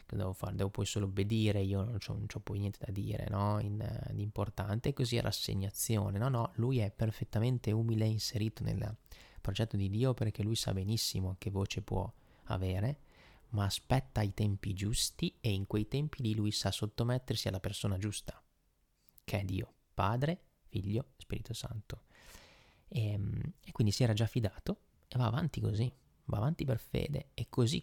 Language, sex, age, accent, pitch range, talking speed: Italian, male, 20-39, native, 105-125 Hz, 175 wpm